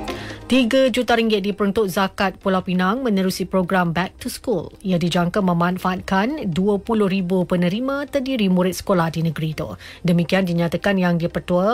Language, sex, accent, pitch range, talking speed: English, female, Malaysian, 175-225 Hz, 140 wpm